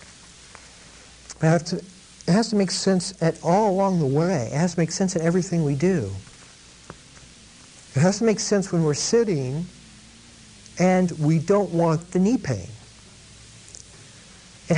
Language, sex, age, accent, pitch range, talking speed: English, male, 60-79, American, 140-190 Hz, 145 wpm